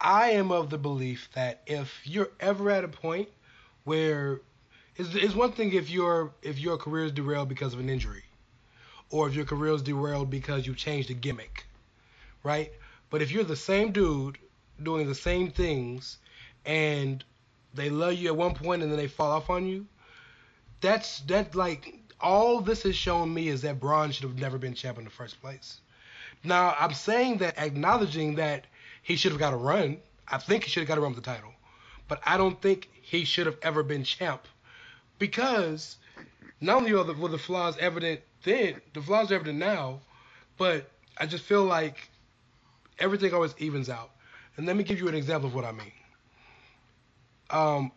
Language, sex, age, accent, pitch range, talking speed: English, male, 20-39, American, 130-175 Hz, 190 wpm